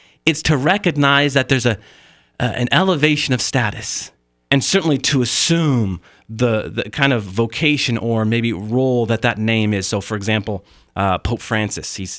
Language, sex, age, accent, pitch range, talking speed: English, male, 30-49, American, 105-135 Hz, 165 wpm